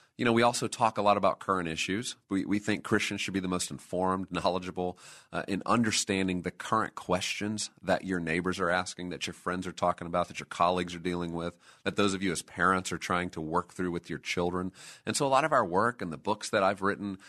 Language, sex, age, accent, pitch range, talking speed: English, male, 40-59, American, 85-100 Hz, 245 wpm